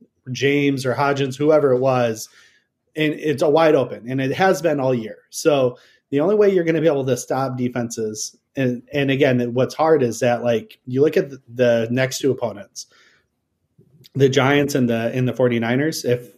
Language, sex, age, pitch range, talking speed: English, male, 30-49, 120-140 Hz, 195 wpm